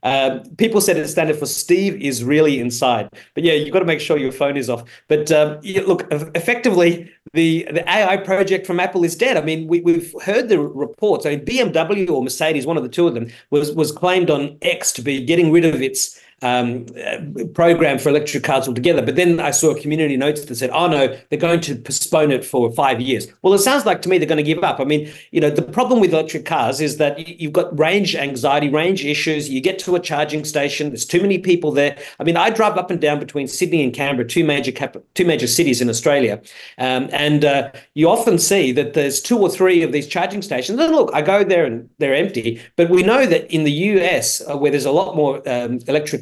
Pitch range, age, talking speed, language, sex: 140-180 Hz, 40-59, 240 wpm, English, male